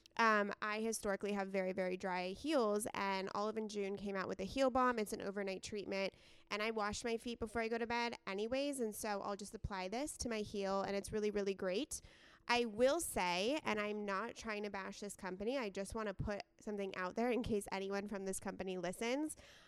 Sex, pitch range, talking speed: female, 195-240 Hz, 225 wpm